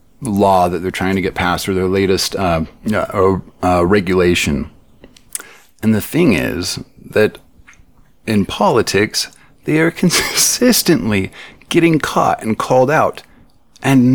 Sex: male